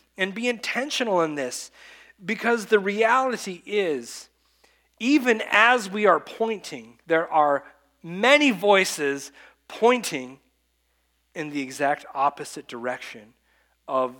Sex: male